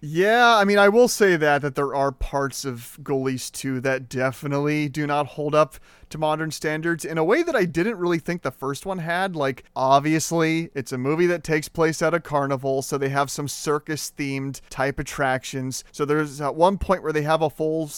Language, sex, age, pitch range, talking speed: English, male, 30-49, 135-160 Hz, 210 wpm